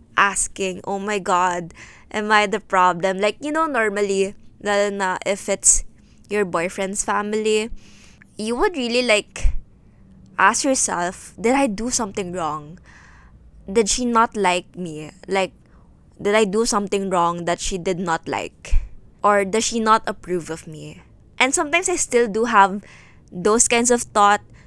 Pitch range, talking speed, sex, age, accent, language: 185-230 Hz, 150 wpm, female, 20-39, native, Filipino